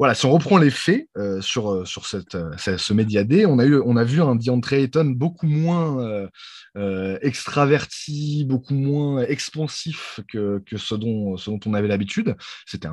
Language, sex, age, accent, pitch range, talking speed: French, male, 20-39, French, 100-125 Hz, 195 wpm